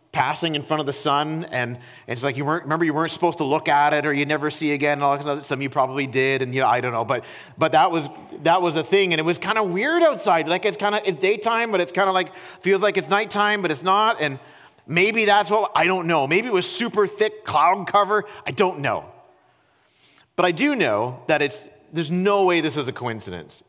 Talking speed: 250 wpm